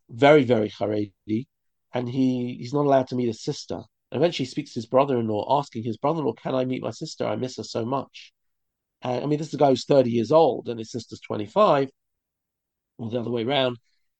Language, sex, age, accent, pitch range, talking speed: English, male, 40-59, British, 115-155 Hz, 220 wpm